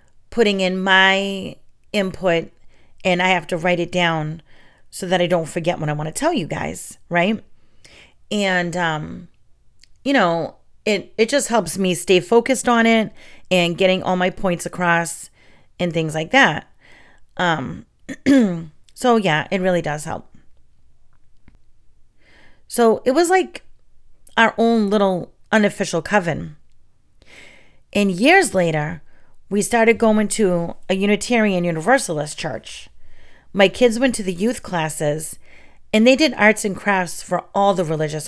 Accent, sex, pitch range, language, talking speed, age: American, female, 170-225 Hz, English, 145 wpm, 30-49